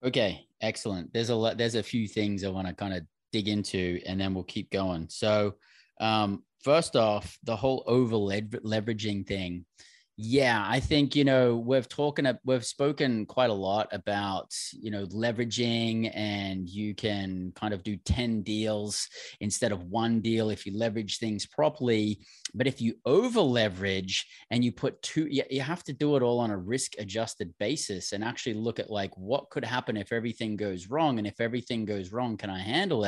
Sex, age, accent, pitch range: male, 20-39, Australian, 100-120 Hz